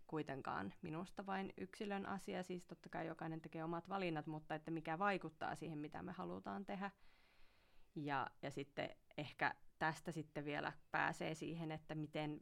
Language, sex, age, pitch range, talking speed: Finnish, female, 30-49, 150-180 Hz, 155 wpm